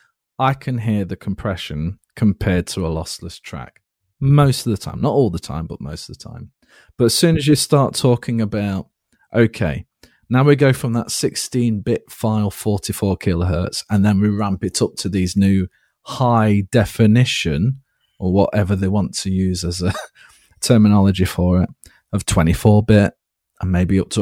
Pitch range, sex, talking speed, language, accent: 95-120 Hz, male, 170 wpm, English, British